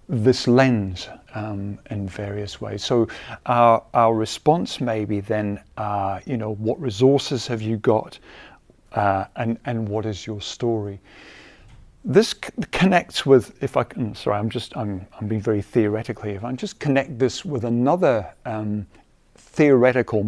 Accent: British